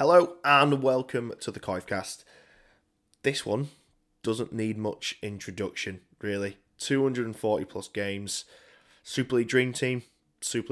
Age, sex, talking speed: 20-39, male, 120 wpm